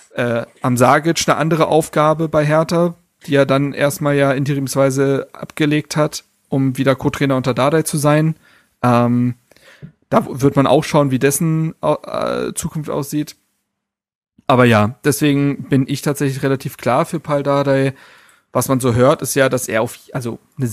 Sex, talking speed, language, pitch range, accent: male, 160 wpm, German, 120-150 Hz, German